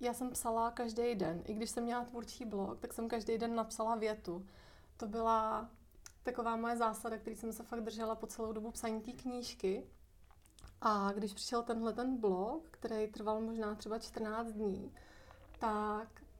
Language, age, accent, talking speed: Czech, 30-49, native, 170 wpm